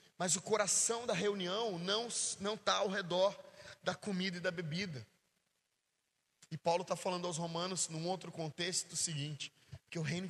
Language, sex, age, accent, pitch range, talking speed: Portuguese, male, 20-39, Brazilian, 165-205 Hz, 170 wpm